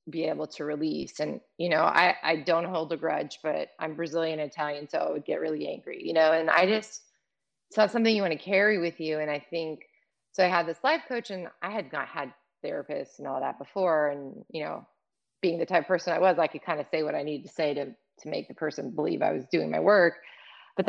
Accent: American